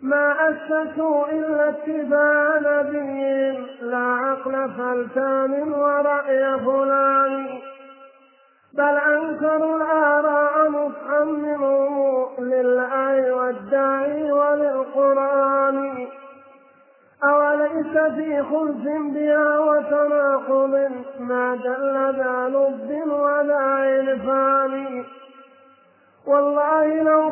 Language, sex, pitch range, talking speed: Arabic, male, 270-295 Hz, 65 wpm